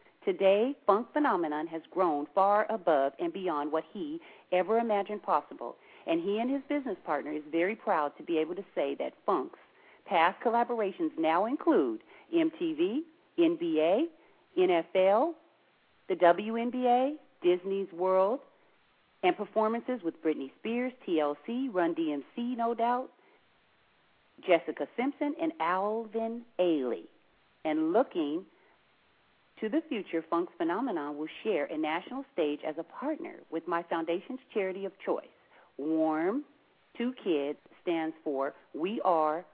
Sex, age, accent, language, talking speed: female, 40-59, American, English, 125 wpm